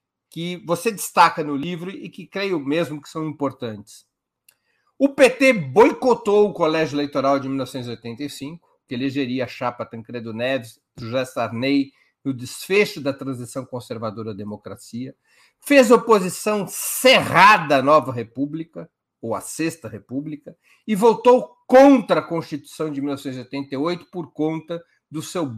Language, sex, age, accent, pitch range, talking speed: Portuguese, male, 50-69, Brazilian, 135-195 Hz, 135 wpm